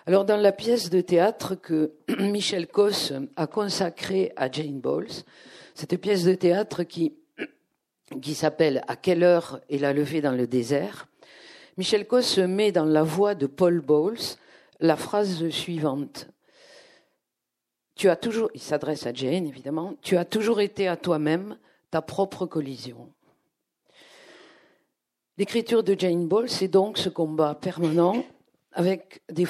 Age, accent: 50-69, French